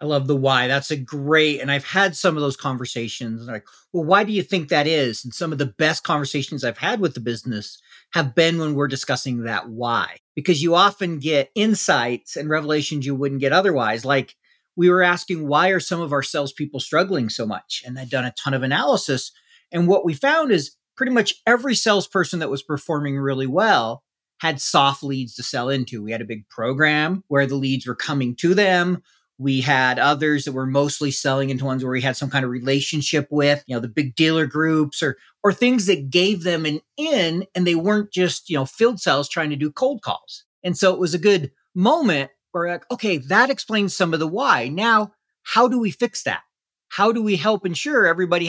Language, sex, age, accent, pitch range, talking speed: English, male, 40-59, American, 135-180 Hz, 215 wpm